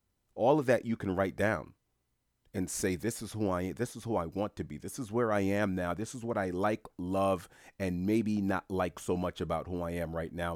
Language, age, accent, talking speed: English, 40-59, American, 255 wpm